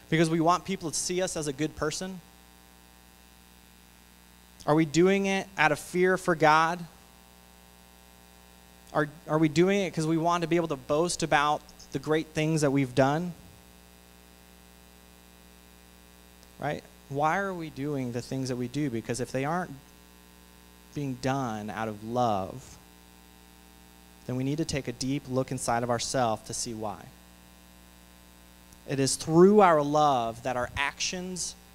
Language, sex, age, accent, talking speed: English, male, 30-49, American, 155 wpm